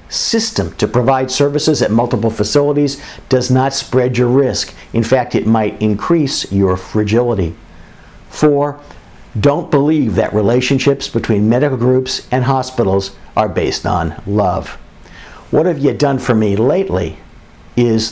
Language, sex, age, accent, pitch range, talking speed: English, male, 50-69, American, 110-140 Hz, 135 wpm